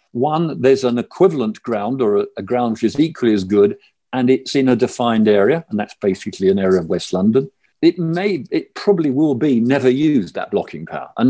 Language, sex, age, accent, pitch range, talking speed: English, male, 50-69, British, 120-175 Hz, 210 wpm